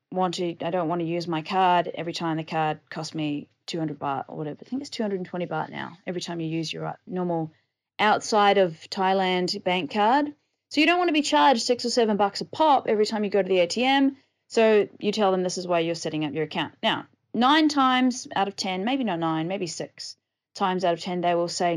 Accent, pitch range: Australian, 170-235 Hz